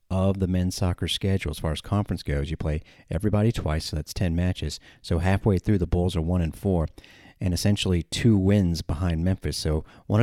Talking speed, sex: 205 wpm, male